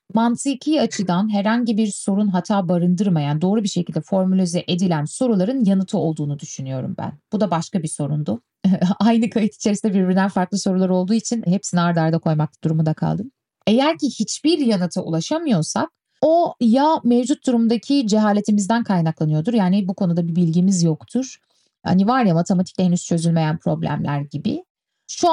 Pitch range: 180-260 Hz